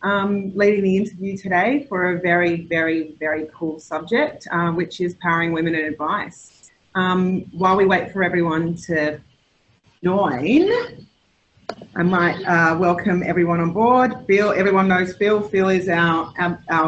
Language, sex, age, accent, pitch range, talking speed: English, female, 30-49, Australian, 160-185 Hz, 150 wpm